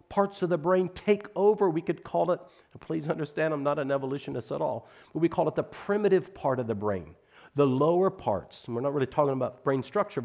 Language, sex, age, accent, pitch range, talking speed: English, male, 50-69, American, 110-170 Hz, 230 wpm